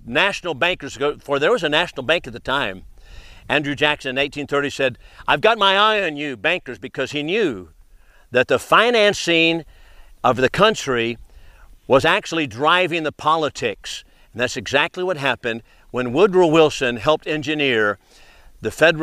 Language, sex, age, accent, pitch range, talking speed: English, male, 50-69, American, 135-175 Hz, 160 wpm